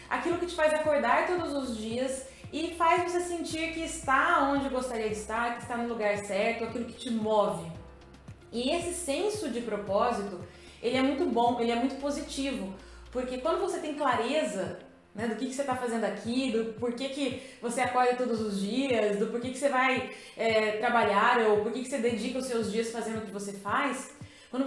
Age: 20-39